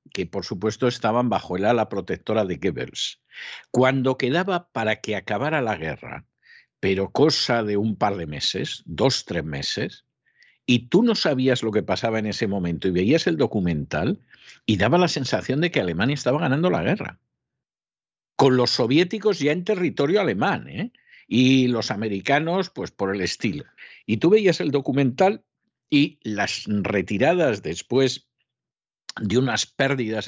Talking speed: 155 wpm